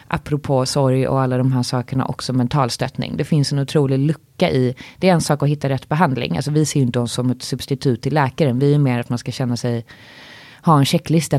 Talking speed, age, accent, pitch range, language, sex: 235 wpm, 20-39, native, 130-150 Hz, Swedish, female